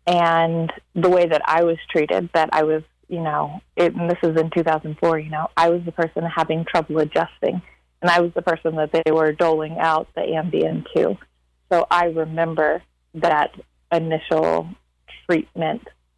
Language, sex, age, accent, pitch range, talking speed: English, female, 30-49, American, 155-170 Hz, 170 wpm